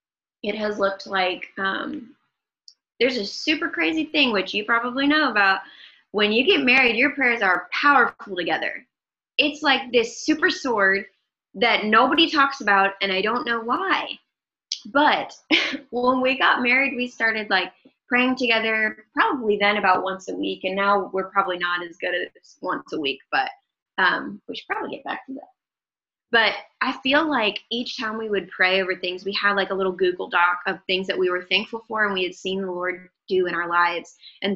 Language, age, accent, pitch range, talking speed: English, 20-39, American, 190-250 Hz, 190 wpm